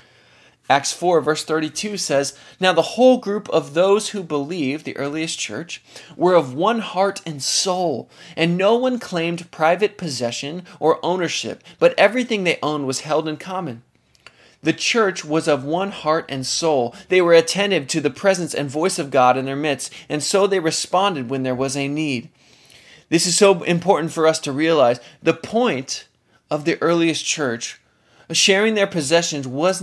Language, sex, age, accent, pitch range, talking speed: English, male, 20-39, American, 150-190 Hz, 175 wpm